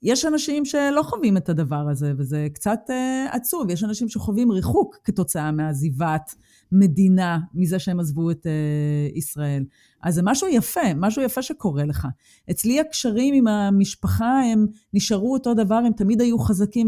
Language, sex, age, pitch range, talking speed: Hebrew, female, 30-49, 185-245 Hz, 155 wpm